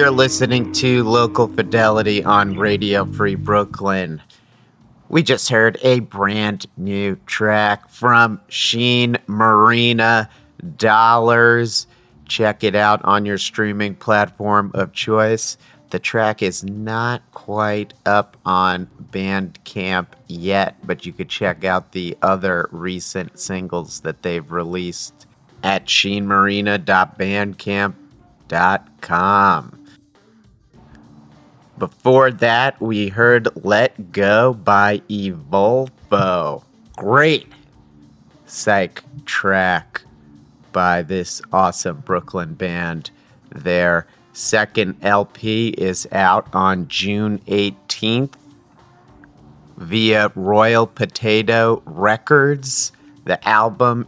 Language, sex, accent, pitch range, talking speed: English, male, American, 95-115 Hz, 90 wpm